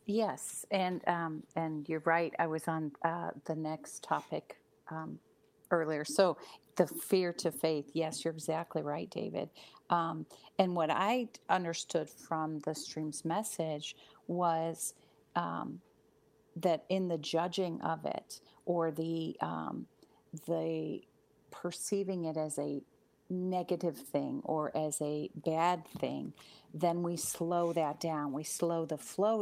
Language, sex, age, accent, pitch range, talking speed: English, female, 50-69, American, 155-175 Hz, 135 wpm